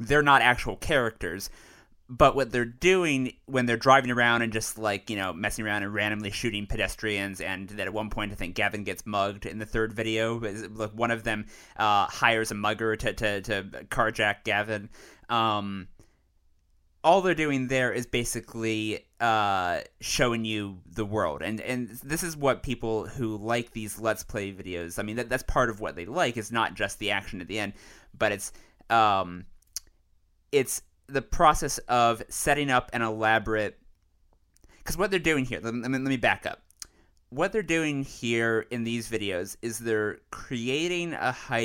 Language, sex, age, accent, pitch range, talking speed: English, male, 30-49, American, 105-125 Hz, 175 wpm